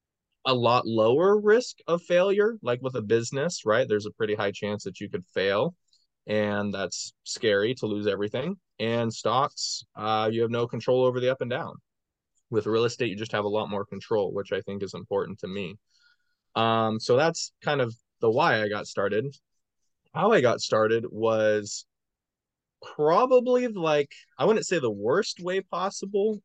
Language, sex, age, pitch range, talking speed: English, male, 20-39, 110-150 Hz, 180 wpm